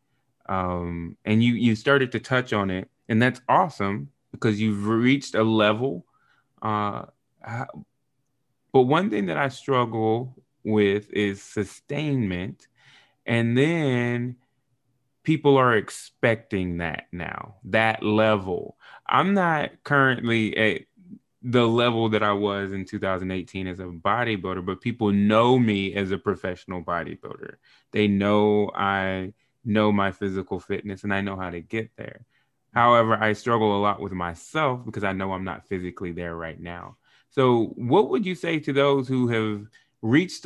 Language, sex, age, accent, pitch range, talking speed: English, male, 20-39, American, 100-130 Hz, 145 wpm